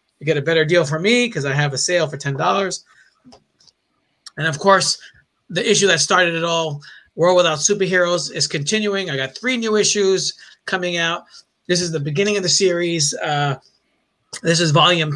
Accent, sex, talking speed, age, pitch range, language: American, male, 185 wpm, 30-49, 145-180 Hz, English